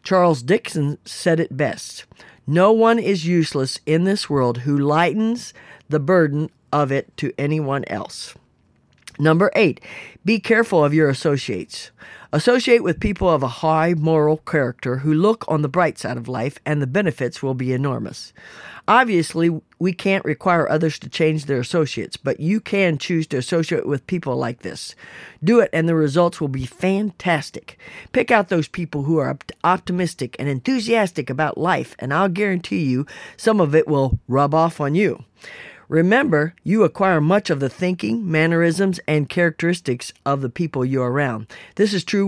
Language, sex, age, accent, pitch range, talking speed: English, female, 50-69, American, 145-185 Hz, 165 wpm